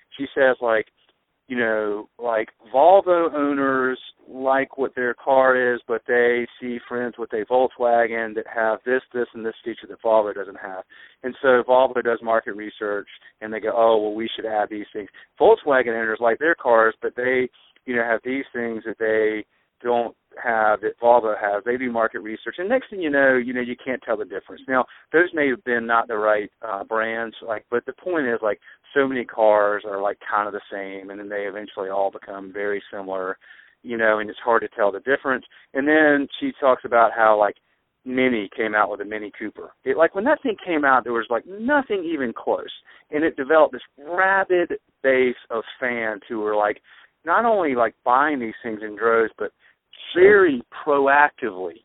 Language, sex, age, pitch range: English, male, 40-59, 110-135 Hz